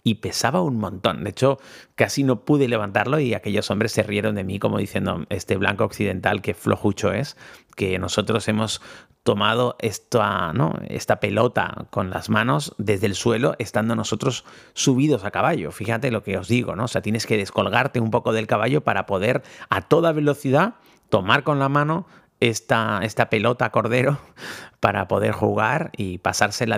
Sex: male